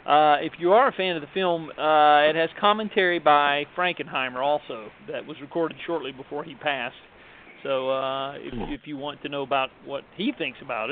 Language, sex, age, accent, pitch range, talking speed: English, male, 40-59, American, 140-175 Hz, 200 wpm